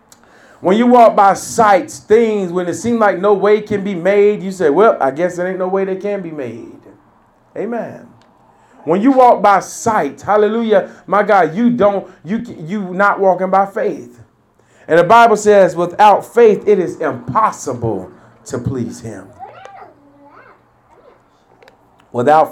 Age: 40-59